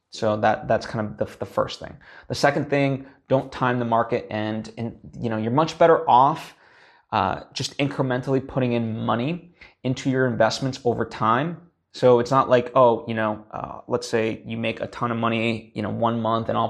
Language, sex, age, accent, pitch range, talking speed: English, male, 20-39, American, 110-125 Hz, 205 wpm